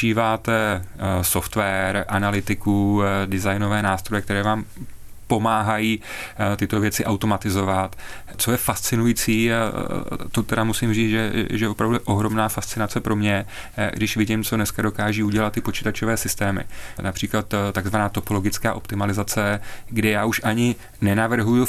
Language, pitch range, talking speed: Czech, 105-115 Hz, 115 wpm